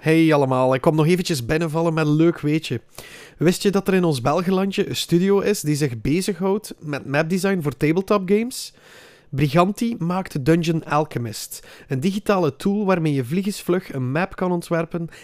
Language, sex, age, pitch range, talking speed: Dutch, male, 30-49, 130-175 Hz, 170 wpm